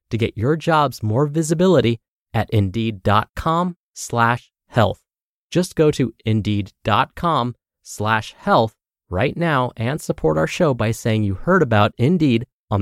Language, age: English, 20-39